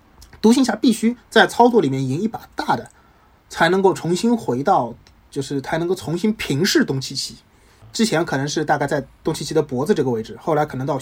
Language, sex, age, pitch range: Chinese, male, 20-39, 135-215 Hz